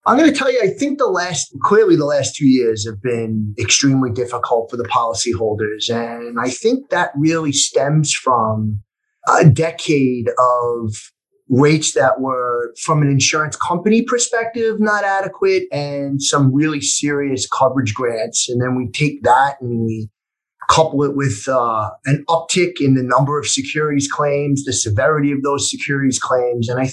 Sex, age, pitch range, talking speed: male, 30-49, 130-165 Hz, 165 wpm